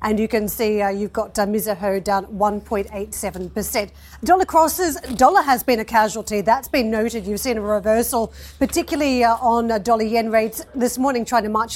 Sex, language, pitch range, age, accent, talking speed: female, English, 215-245 Hz, 40-59, Australian, 185 wpm